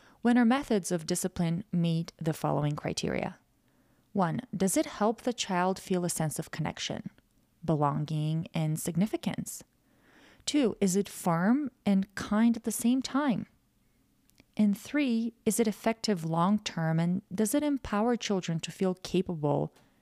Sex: female